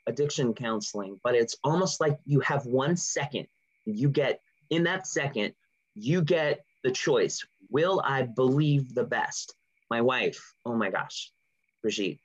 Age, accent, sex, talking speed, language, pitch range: 30-49, American, male, 145 wpm, English, 130-165 Hz